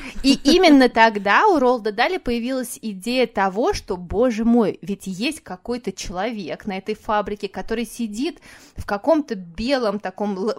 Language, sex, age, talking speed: Russian, female, 20-39, 145 wpm